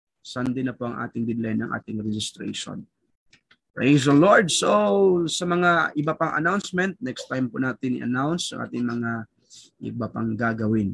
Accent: native